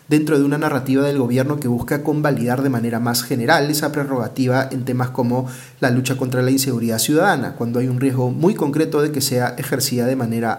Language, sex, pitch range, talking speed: Spanish, male, 125-145 Hz, 205 wpm